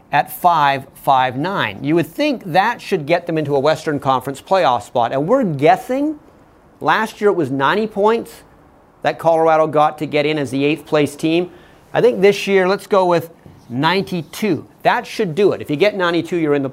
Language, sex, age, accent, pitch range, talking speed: English, male, 40-59, American, 145-200 Hz, 195 wpm